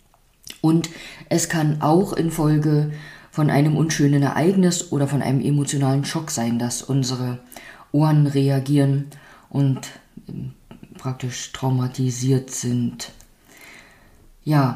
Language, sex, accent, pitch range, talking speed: German, female, German, 140-165 Hz, 100 wpm